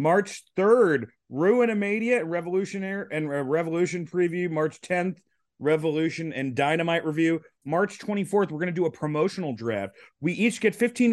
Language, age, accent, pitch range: English, 30-49, American, 145-190 Hz